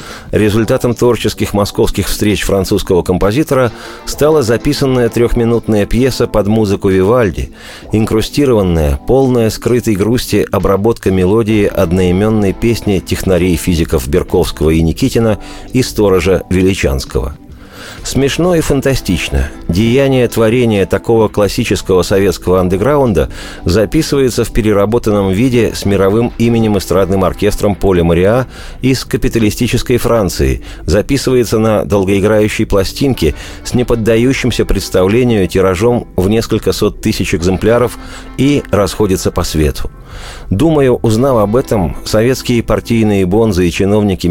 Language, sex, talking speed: Russian, male, 105 wpm